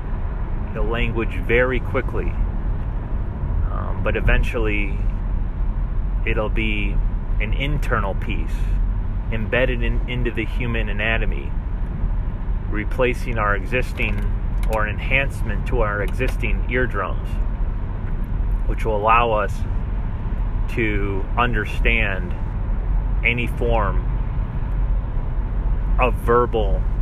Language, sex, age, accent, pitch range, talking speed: English, male, 30-49, American, 95-115 Hz, 80 wpm